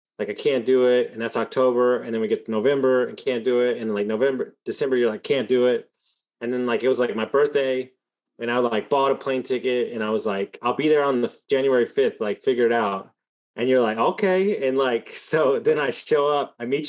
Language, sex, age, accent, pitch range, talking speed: English, male, 20-39, American, 115-140 Hz, 250 wpm